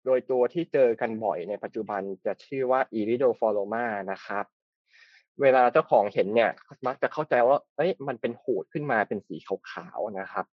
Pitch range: 105-140 Hz